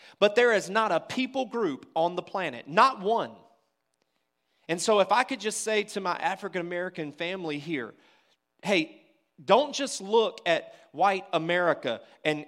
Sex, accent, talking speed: male, American, 155 wpm